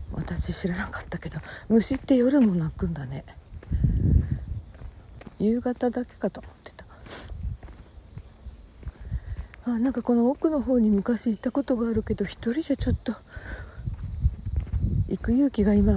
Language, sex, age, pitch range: Japanese, female, 50-69, 145-230 Hz